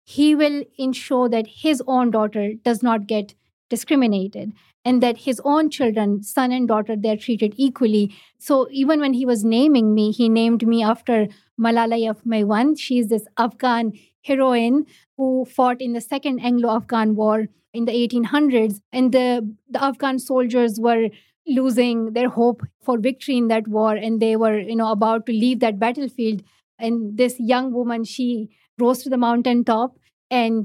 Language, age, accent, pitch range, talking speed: English, 50-69, Indian, 225-265 Hz, 165 wpm